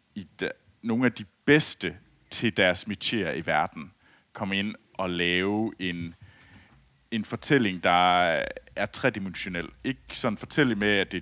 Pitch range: 95-125 Hz